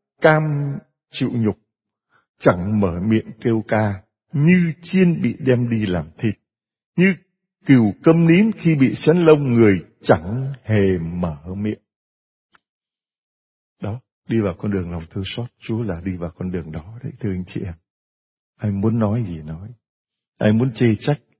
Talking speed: 160 wpm